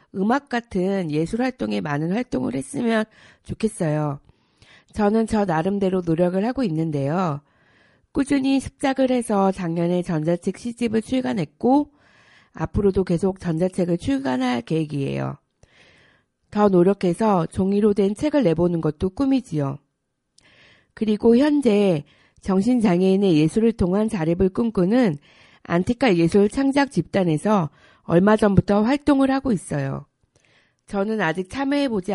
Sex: female